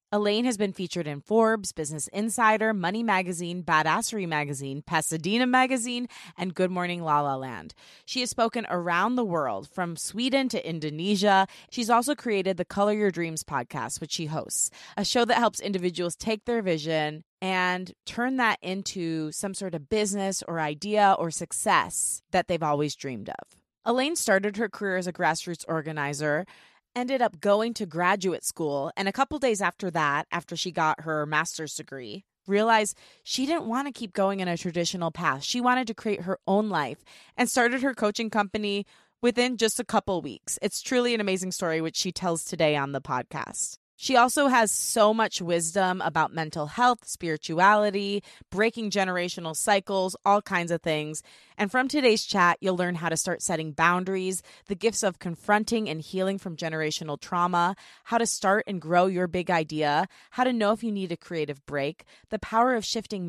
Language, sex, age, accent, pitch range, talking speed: English, female, 20-39, American, 160-215 Hz, 180 wpm